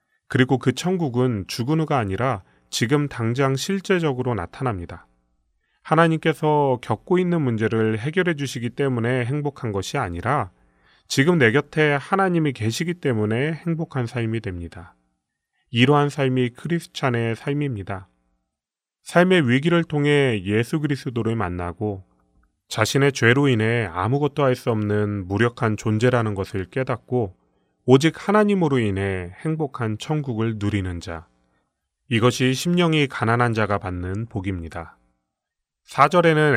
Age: 30-49